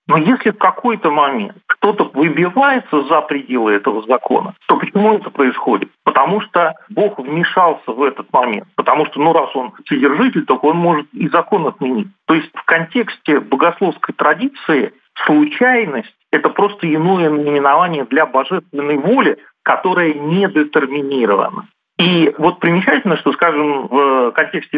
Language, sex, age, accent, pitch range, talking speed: Russian, male, 40-59, native, 145-205 Hz, 140 wpm